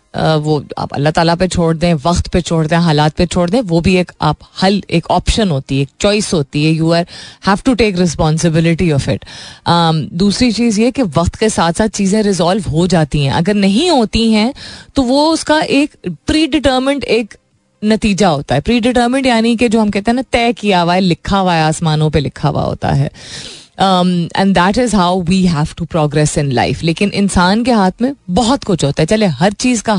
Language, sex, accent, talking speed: Hindi, female, native, 220 wpm